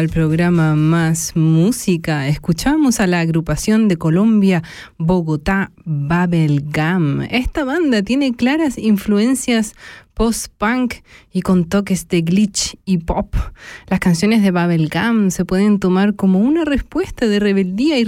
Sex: female